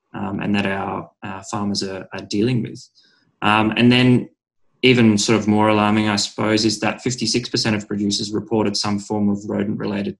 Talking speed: 175 wpm